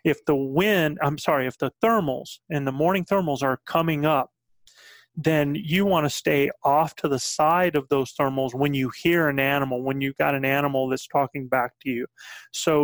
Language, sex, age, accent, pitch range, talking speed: English, male, 30-49, American, 135-165 Hz, 200 wpm